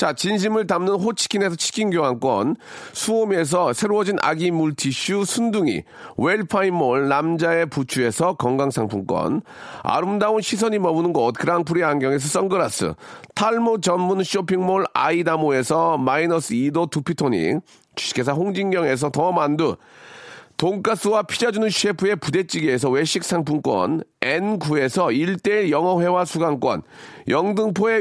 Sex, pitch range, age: male, 170-215 Hz, 40-59